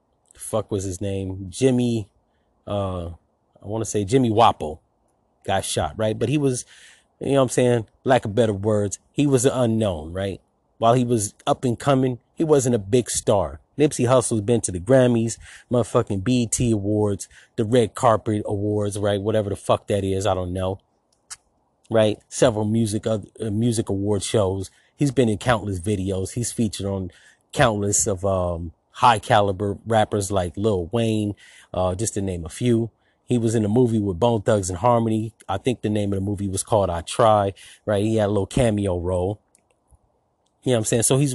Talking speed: 190 wpm